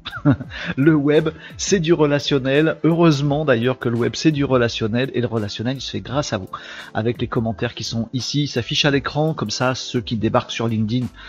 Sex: male